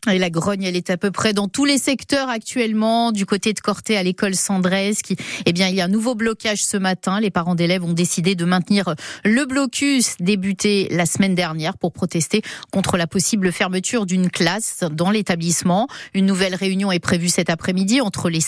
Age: 40-59